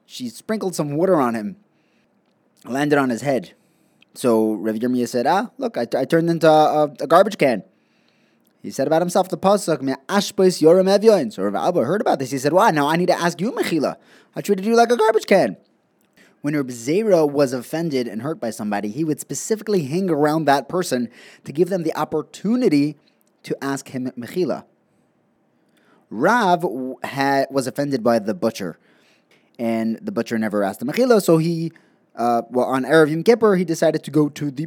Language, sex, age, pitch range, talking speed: English, male, 20-39, 125-180 Hz, 190 wpm